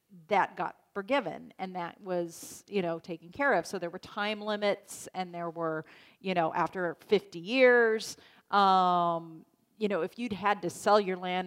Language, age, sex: English, 40-59, female